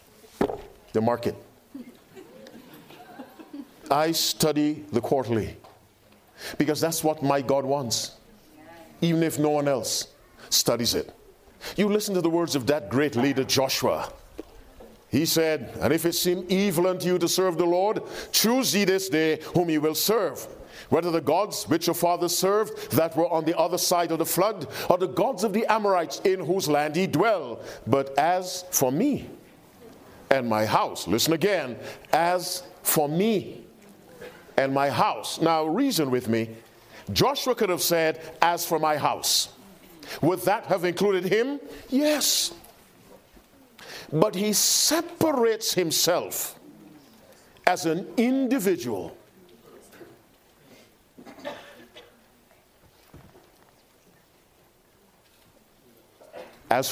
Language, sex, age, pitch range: English, male, 50-69, 150-195 Hz